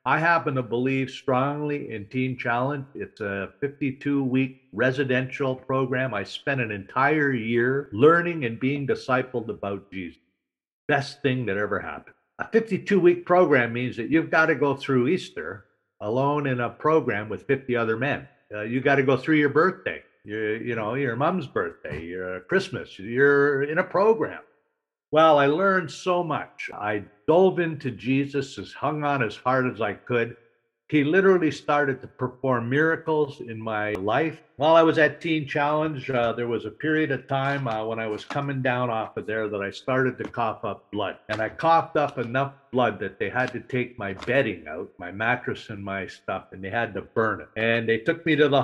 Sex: male